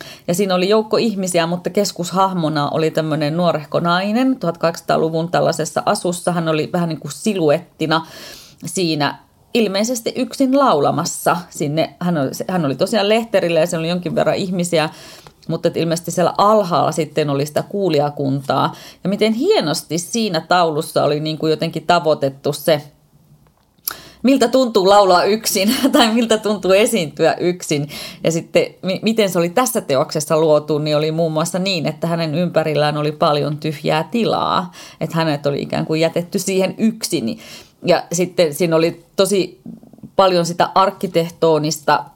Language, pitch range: Finnish, 155-190 Hz